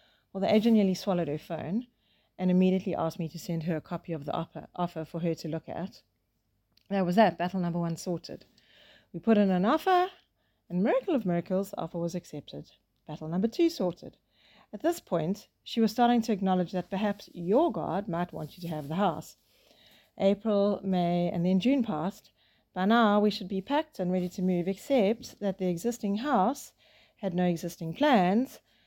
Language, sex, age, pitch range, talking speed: English, female, 40-59, 170-205 Hz, 195 wpm